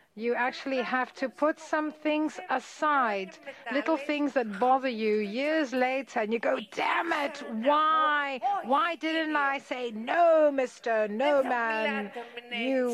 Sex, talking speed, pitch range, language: female, 140 wpm, 225-285 Hz, Greek